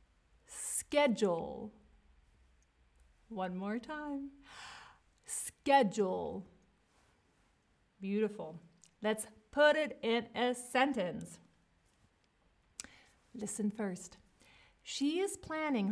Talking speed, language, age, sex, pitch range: 65 wpm, English, 30-49, female, 180-235 Hz